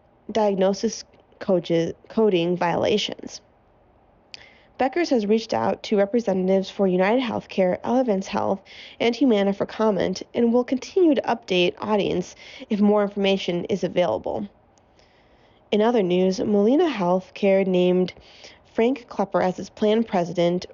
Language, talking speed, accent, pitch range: English, 120 wpm, American, 180-225 Hz